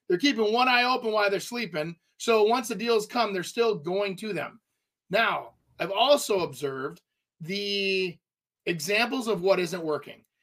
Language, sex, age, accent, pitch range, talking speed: English, male, 30-49, American, 180-215 Hz, 160 wpm